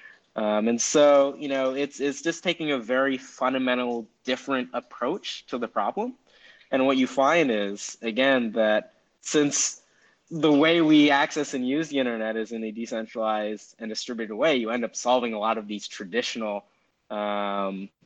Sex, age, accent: male, 20-39, American